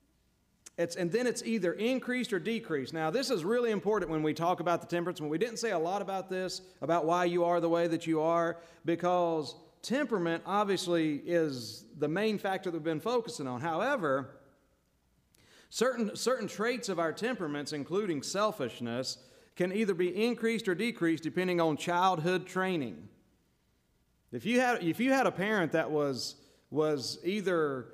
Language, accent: English, American